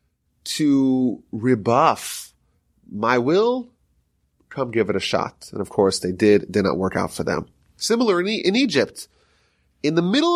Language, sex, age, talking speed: English, male, 30-49, 150 wpm